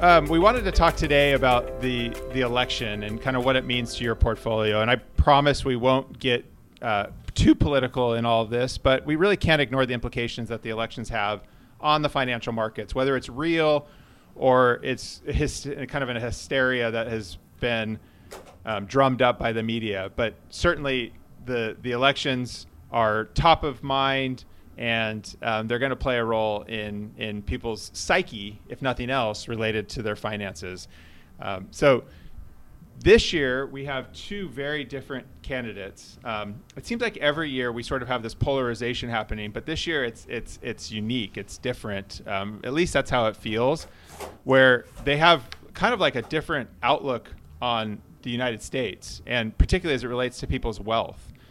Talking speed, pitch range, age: 180 wpm, 110-135 Hz, 30-49